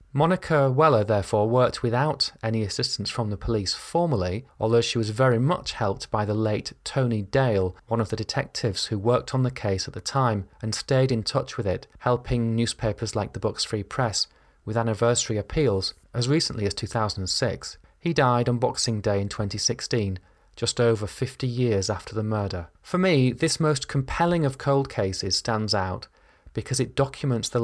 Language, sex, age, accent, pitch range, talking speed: English, male, 30-49, British, 100-130 Hz, 180 wpm